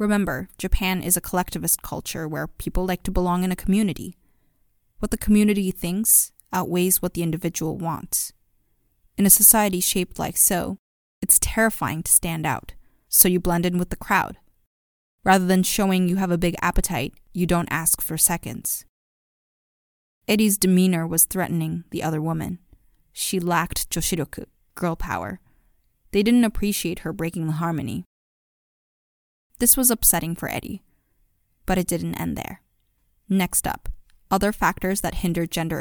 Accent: American